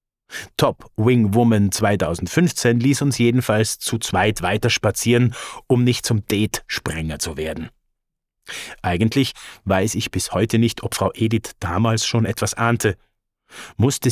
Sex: male